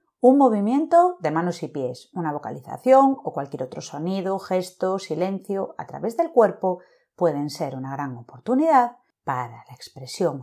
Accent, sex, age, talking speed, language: Spanish, female, 40-59, 150 wpm, Spanish